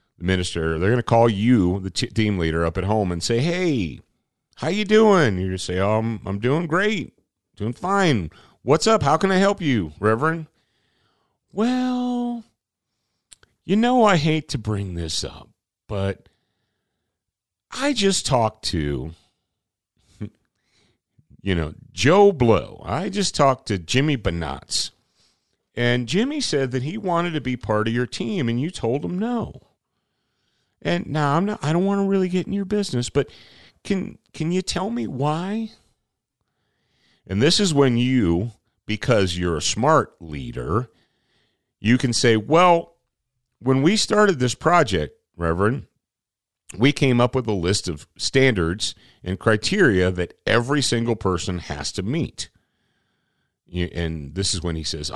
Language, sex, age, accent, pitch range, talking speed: English, male, 40-59, American, 95-155 Hz, 150 wpm